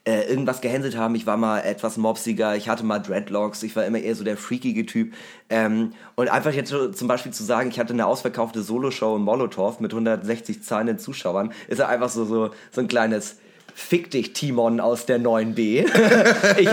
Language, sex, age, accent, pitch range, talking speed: German, male, 30-49, German, 110-130 Hz, 195 wpm